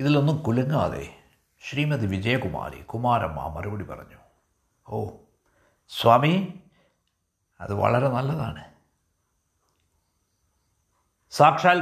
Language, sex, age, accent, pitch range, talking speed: Malayalam, male, 60-79, native, 90-135 Hz, 65 wpm